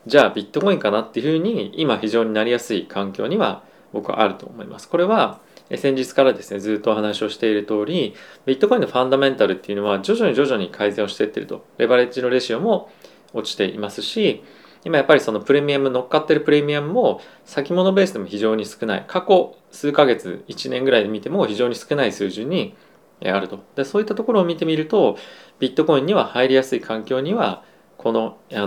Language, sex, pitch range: Japanese, male, 105-145 Hz